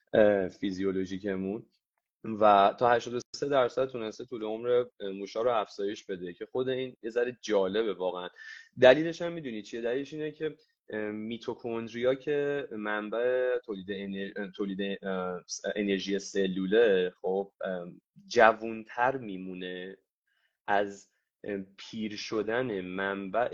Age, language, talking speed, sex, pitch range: 20-39, Persian, 100 wpm, male, 95-120 Hz